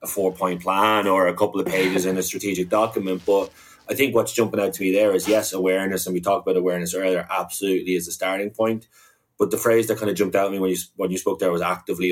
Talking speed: 260 wpm